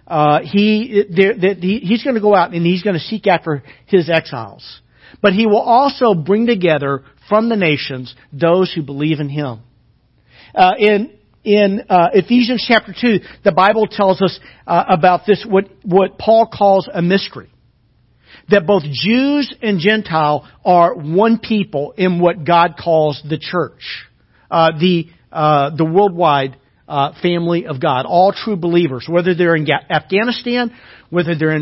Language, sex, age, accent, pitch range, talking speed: English, male, 50-69, American, 150-215 Hz, 160 wpm